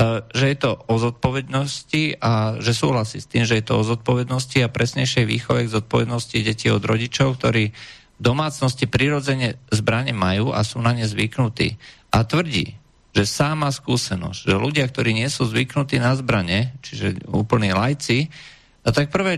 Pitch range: 105-130 Hz